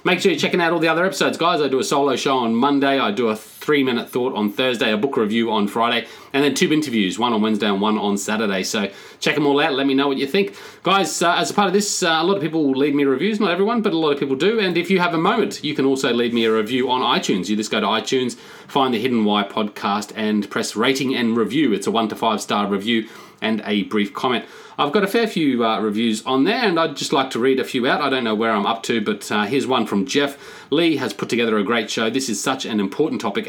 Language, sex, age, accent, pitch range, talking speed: English, male, 30-49, Australian, 115-155 Hz, 280 wpm